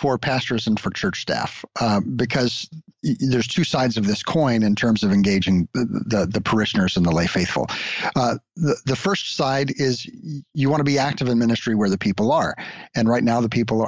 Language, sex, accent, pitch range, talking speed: English, male, American, 115-150 Hz, 205 wpm